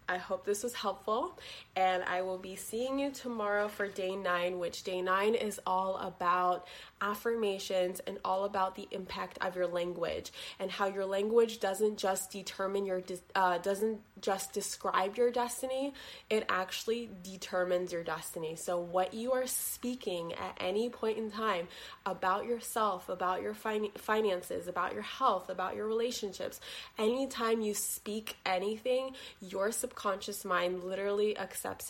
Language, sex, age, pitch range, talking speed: English, female, 20-39, 180-215 Hz, 150 wpm